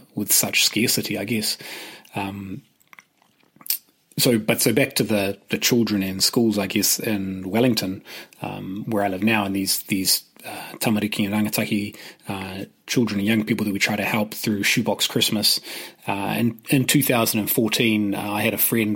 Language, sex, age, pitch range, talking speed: English, male, 30-49, 100-115 Hz, 170 wpm